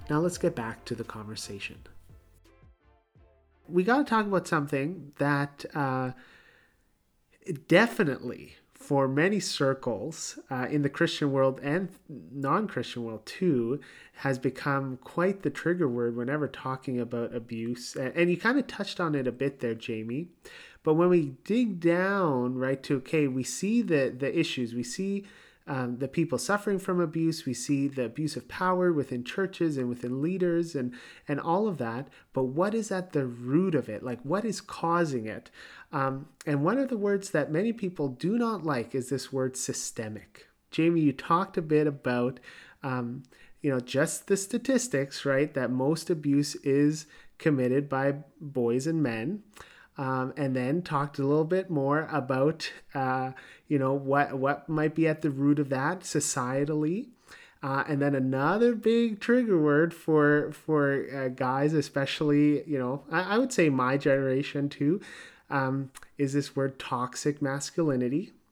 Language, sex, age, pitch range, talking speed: English, male, 30-49, 130-170 Hz, 165 wpm